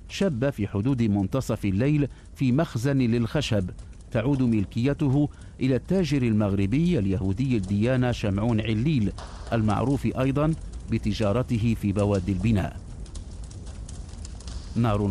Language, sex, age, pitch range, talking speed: English, male, 50-69, 100-135 Hz, 95 wpm